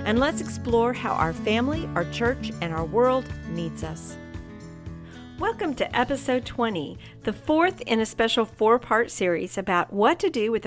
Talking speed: 165 wpm